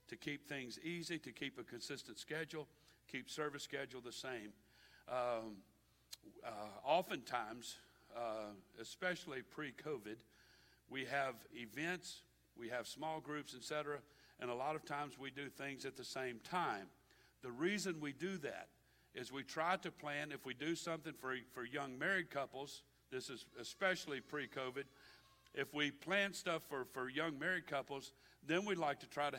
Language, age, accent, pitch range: English, 60-79, American, 125-160 Hz